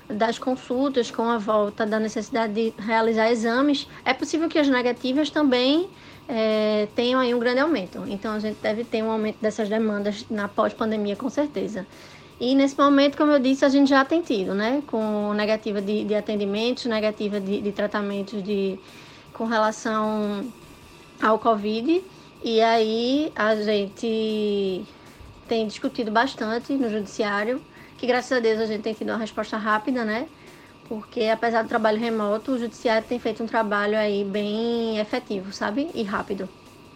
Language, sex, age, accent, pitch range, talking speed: Portuguese, female, 20-39, Brazilian, 210-250 Hz, 160 wpm